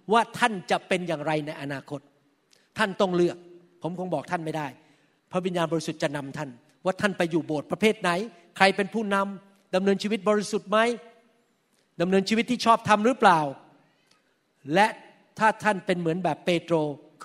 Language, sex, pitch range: Thai, male, 165-210 Hz